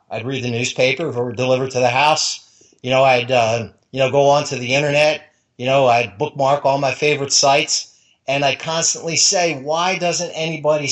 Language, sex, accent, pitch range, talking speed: English, male, American, 130-150 Hz, 200 wpm